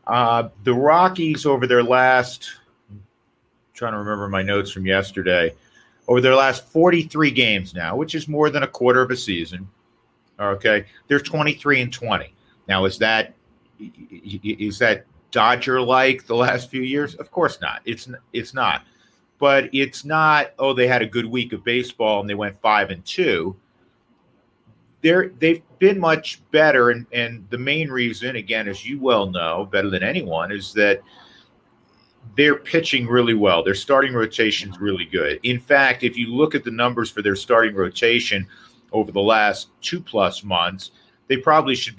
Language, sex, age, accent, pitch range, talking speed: English, male, 40-59, American, 100-130 Hz, 170 wpm